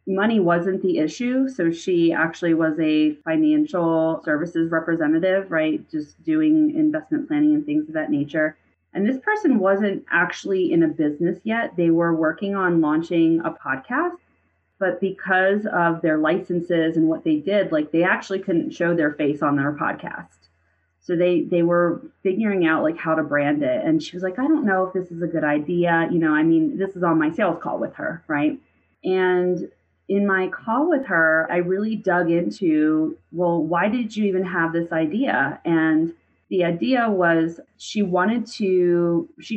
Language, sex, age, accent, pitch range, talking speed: English, female, 30-49, American, 165-215 Hz, 180 wpm